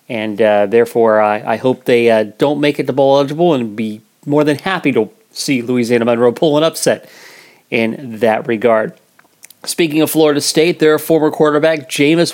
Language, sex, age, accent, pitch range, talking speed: English, male, 40-59, American, 120-165 Hz, 180 wpm